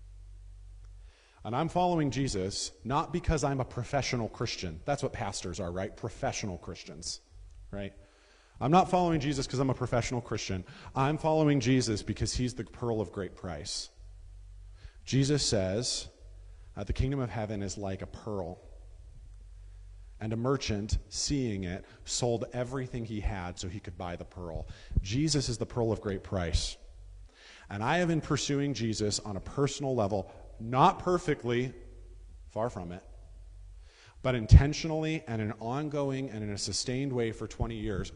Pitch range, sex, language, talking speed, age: 95-125 Hz, male, English, 155 wpm, 40-59